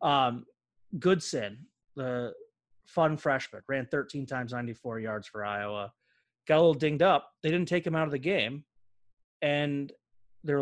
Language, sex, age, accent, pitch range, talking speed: English, male, 30-49, American, 115-175 Hz, 155 wpm